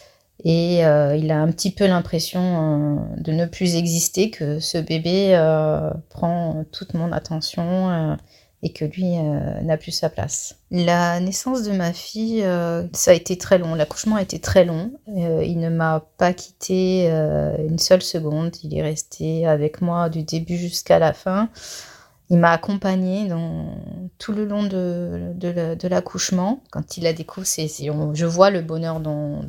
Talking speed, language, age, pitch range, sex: 170 wpm, French, 30-49, 155-180 Hz, female